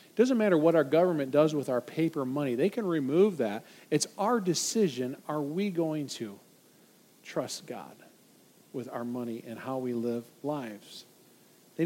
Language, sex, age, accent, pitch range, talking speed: English, male, 40-59, American, 165-210 Hz, 160 wpm